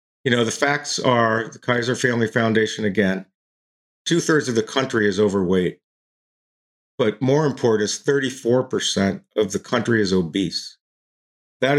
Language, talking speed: English, 135 wpm